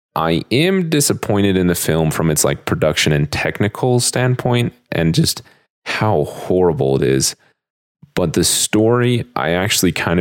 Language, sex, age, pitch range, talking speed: English, male, 30-49, 75-105 Hz, 145 wpm